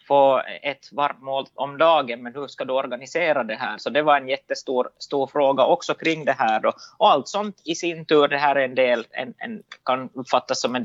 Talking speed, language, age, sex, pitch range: 225 wpm, Swedish, 20-39, male, 130-160 Hz